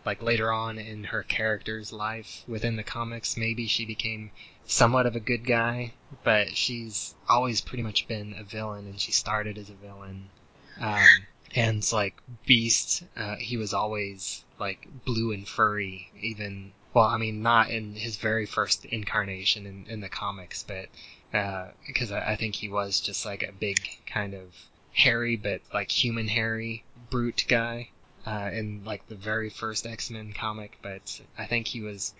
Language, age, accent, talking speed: English, 20-39, American, 170 wpm